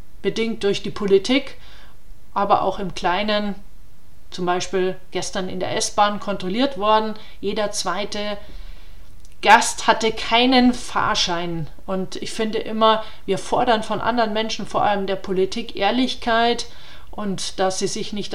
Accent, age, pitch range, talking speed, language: German, 40-59, 190-225 Hz, 135 wpm, German